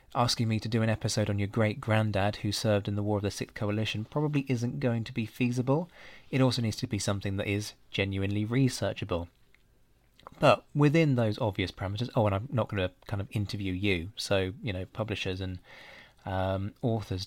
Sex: male